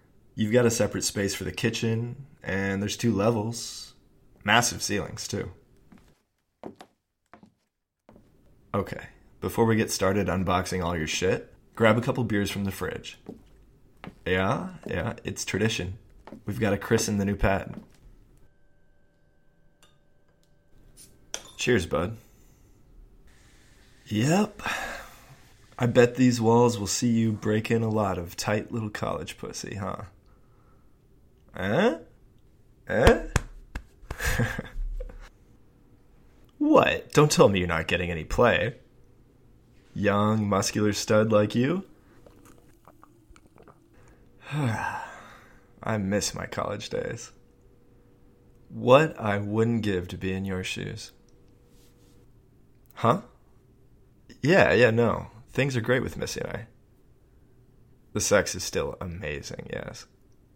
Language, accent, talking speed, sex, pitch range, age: English, American, 110 wpm, male, 95-120 Hz, 20-39